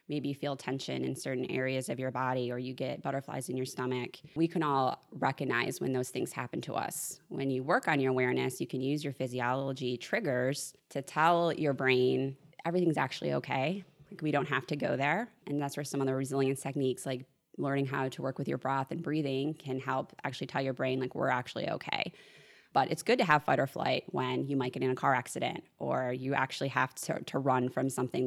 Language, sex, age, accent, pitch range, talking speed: English, female, 20-39, American, 130-140 Hz, 225 wpm